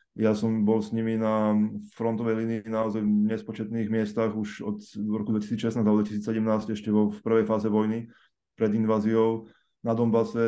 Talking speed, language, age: 160 wpm, Slovak, 20-39